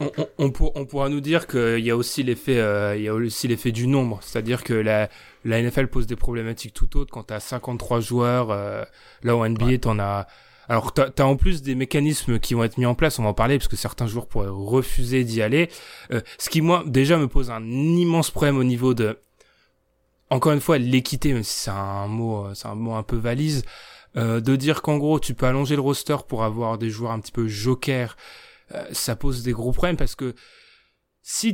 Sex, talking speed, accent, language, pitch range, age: male, 230 wpm, French, French, 115-145 Hz, 20-39